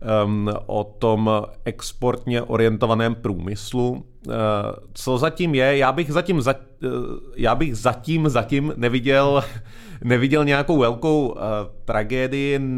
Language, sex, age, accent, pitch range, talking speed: Czech, male, 30-49, native, 115-130 Hz, 85 wpm